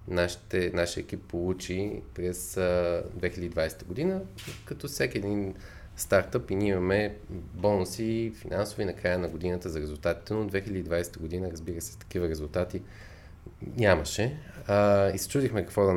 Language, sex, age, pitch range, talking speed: Bulgarian, male, 20-39, 85-105 Hz, 130 wpm